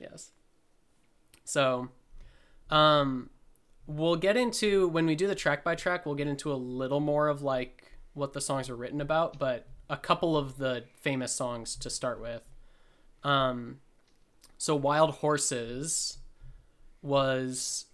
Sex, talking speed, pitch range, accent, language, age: male, 140 wpm, 125-145 Hz, American, English, 20-39